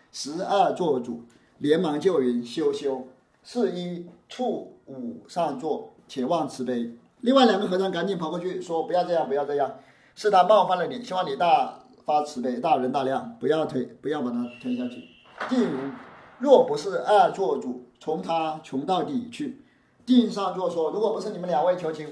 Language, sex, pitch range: Chinese, male, 150-220 Hz